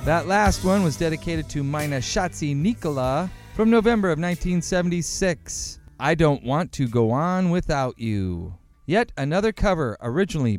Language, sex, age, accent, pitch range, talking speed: English, male, 40-59, American, 135-175 Hz, 140 wpm